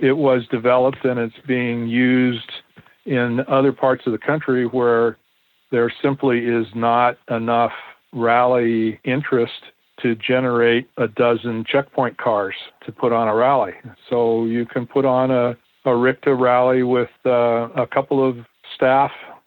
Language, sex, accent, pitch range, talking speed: English, male, American, 120-135 Hz, 145 wpm